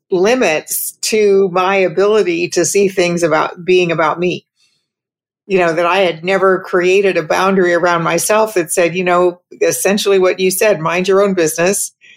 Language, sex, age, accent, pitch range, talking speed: English, female, 50-69, American, 170-195 Hz, 170 wpm